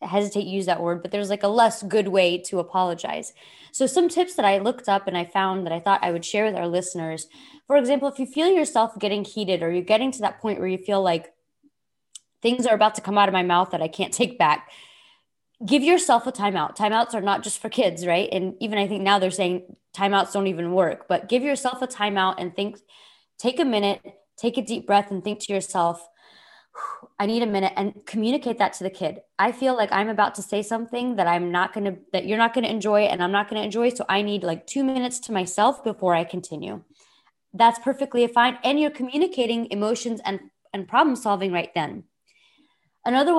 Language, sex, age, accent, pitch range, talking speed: English, female, 20-39, American, 185-240 Hz, 230 wpm